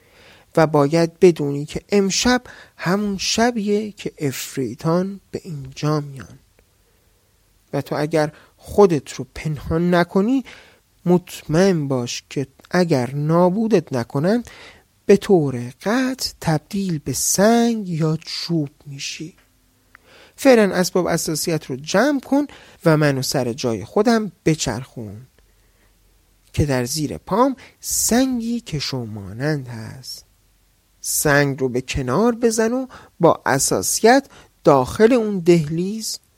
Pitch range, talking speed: 130-200 Hz, 105 wpm